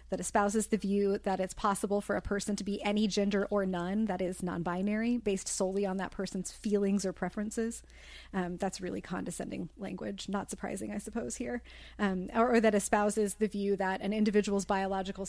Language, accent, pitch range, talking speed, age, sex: English, American, 190-220 Hz, 190 wpm, 30-49, female